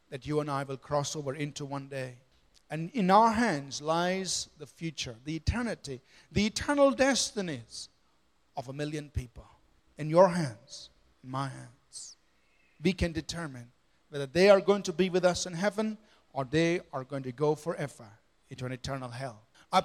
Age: 40-59